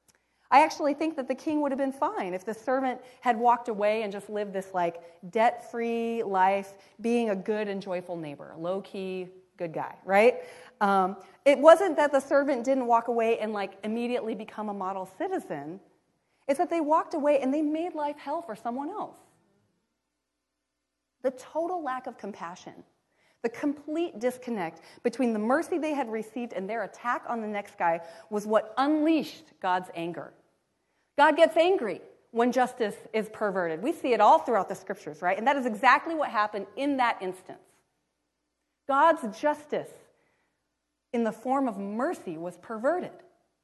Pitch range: 195-295 Hz